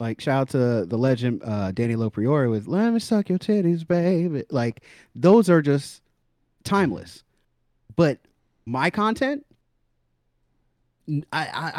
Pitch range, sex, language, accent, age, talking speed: 120-160 Hz, male, English, American, 30-49, 125 wpm